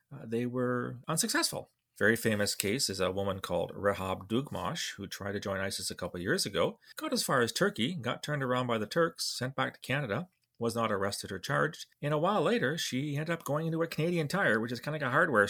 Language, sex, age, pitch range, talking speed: English, male, 30-49, 100-145 Hz, 240 wpm